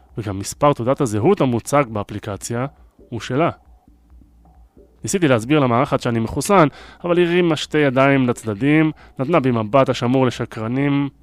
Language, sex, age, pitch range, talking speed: Hebrew, male, 20-39, 110-135 Hz, 120 wpm